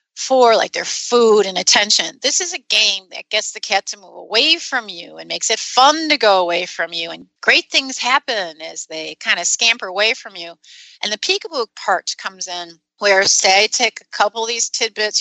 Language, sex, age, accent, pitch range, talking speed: English, female, 30-49, American, 195-240 Hz, 215 wpm